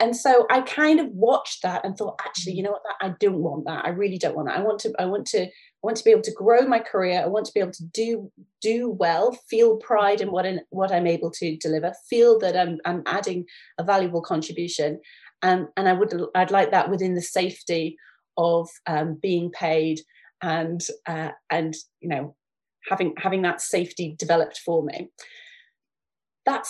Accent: British